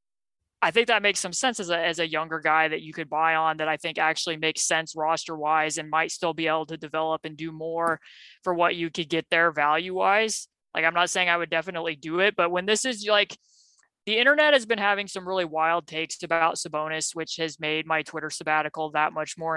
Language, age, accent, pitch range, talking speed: English, 20-39, American, 160-190 Hz, 235 wpm